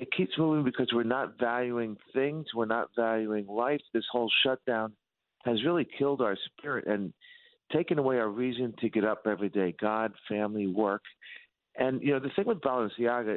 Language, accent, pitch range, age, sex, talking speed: English, American, 110-145 Hz, 50-69, male, 180 wpm